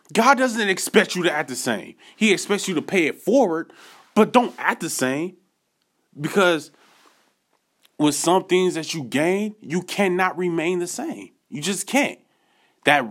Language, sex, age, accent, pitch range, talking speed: English, male, 20-39, American, 165-205 Hz, 165 wpm